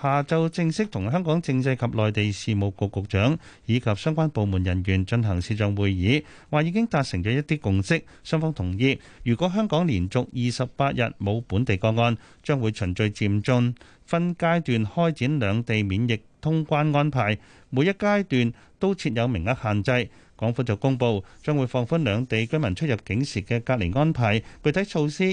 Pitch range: 110-150 Hz